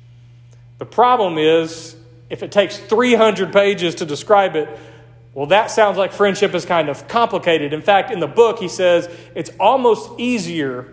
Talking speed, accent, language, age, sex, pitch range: 165 wpm, American, English, 40-59, male, 160-205 Hz